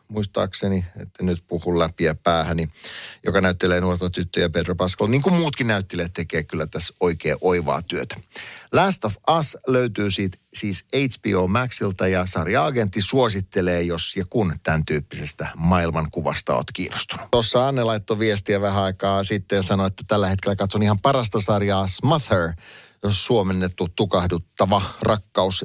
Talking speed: 145 wpm